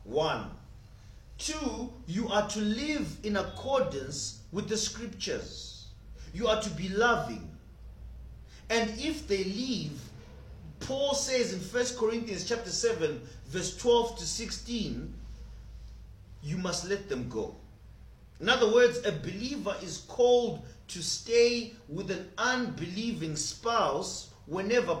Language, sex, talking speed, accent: English, male, 120 wpm, South African